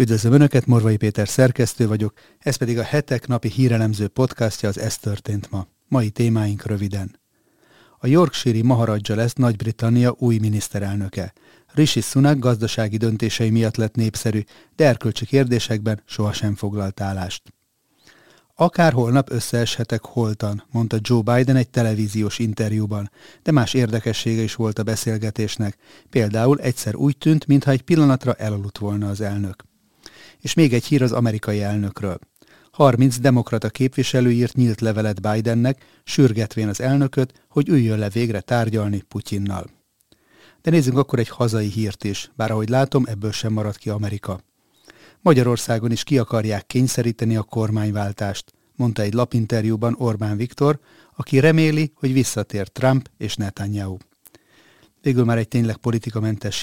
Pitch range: 105-130 Hz